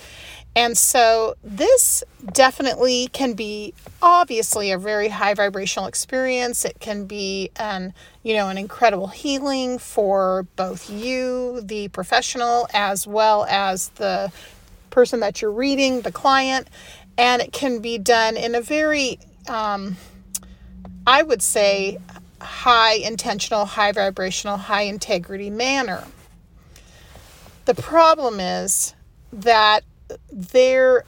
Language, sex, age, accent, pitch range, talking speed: English, female, 40-59, American, 200-245 Hz, 115 wpm